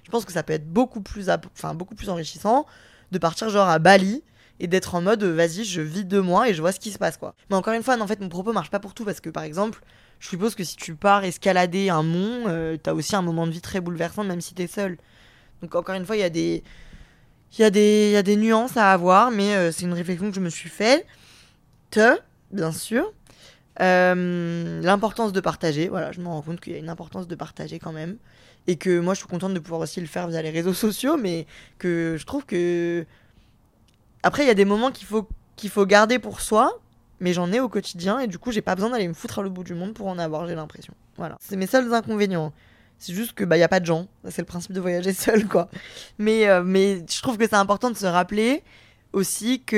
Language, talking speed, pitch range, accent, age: French, 260 wpm, 170-210 Hz, French, 20-39